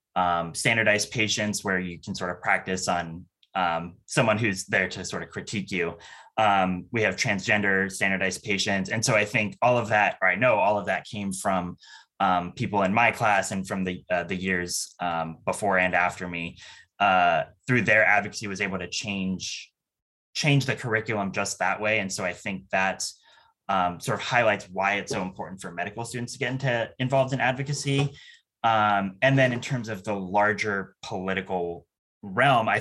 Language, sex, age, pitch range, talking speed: English, male, 20-39, 95-110 Hz, 190 wpm